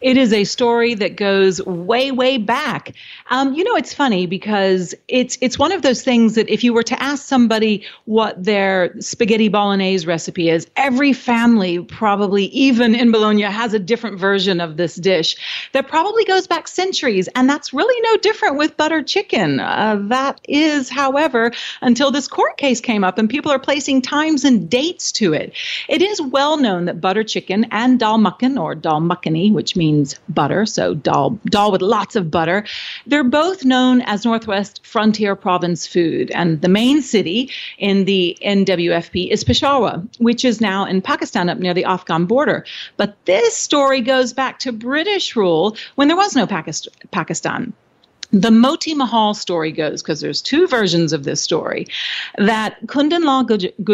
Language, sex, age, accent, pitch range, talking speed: English, female, 40-59, American, 195-275 Hz, 175 wpm